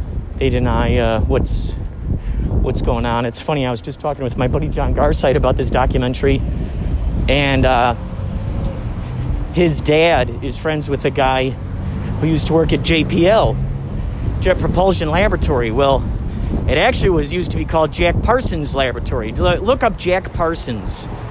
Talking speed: 150 wpm